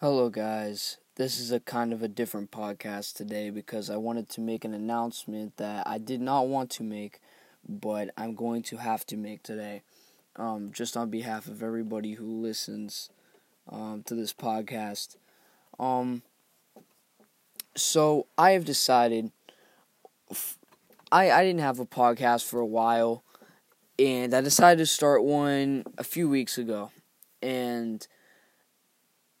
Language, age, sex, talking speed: English, 10-29, male, 145 wpm